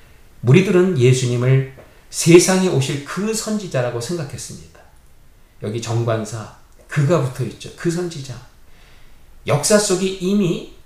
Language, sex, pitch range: Korean, male, 115-170 Hz